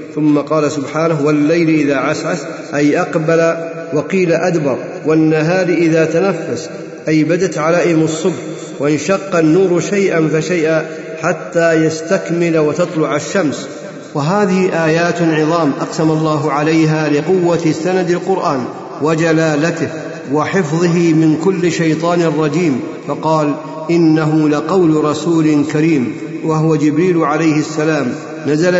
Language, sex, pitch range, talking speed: Arabic, male, 150-170 Hz, 105 wpm